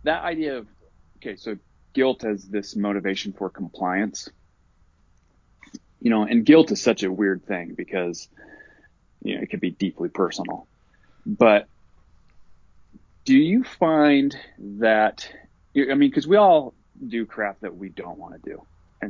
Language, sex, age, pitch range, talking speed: English, male, 30-49, 90-115 Hz, 150 wpm